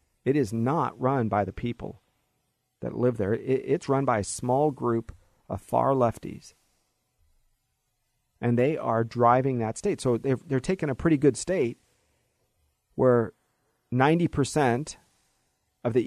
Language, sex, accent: English, male, American